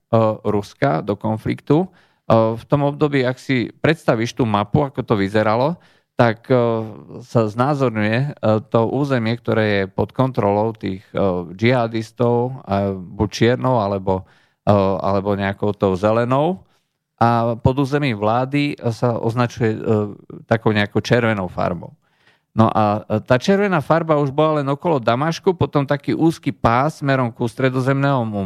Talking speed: 120 wpm